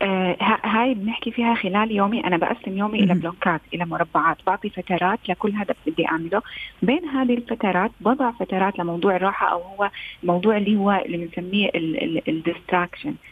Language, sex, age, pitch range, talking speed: Arabic, female, 30-49, 175-220 Hz, 150 wpm